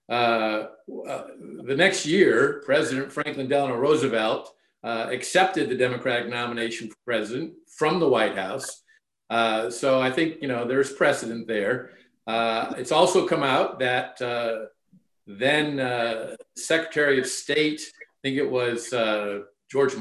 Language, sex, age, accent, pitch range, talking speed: English, male, 50-69, American, 115-165 Hz, 140 wpm